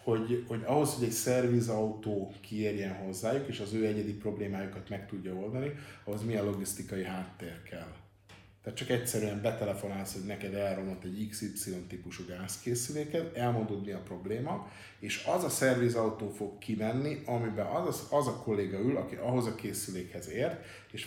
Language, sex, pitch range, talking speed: Hungarian, male, 100-120 Hz, 155 wpm